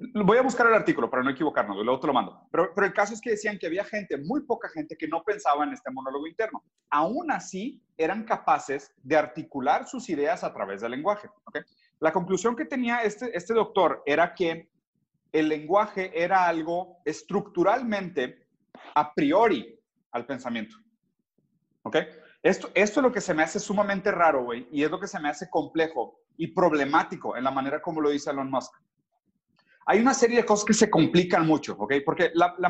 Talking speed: 195 wpm